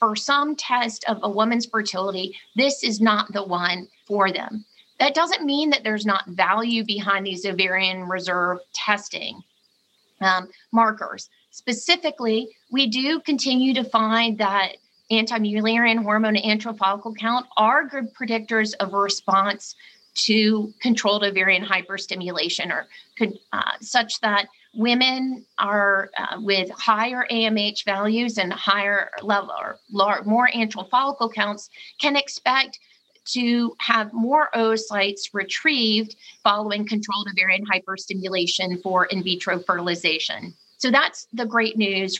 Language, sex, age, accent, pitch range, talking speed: English, female, 30-49, American, 195-235 Hz, 125 wpm